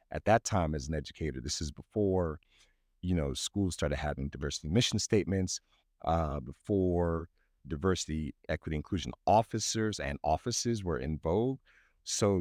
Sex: male